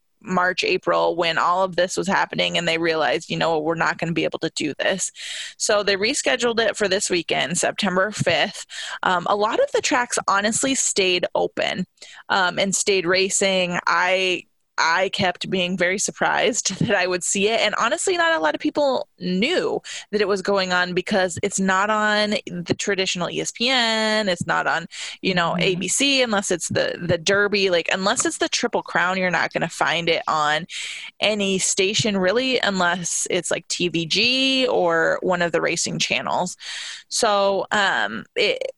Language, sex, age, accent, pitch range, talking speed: English, female, 20-39, American, 175-215 Hz, 180 wpm